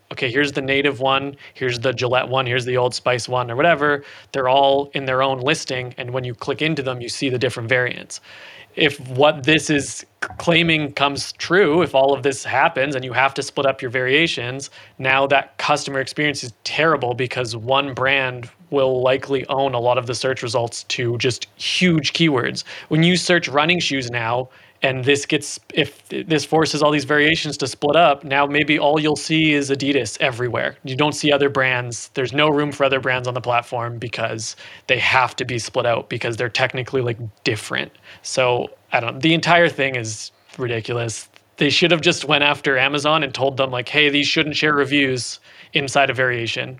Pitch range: 125-145 Hz